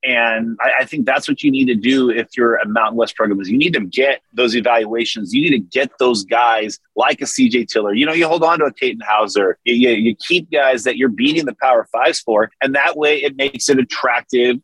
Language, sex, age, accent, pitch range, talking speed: English, male, 30-49, American, 115-150 Hz, 250 wpm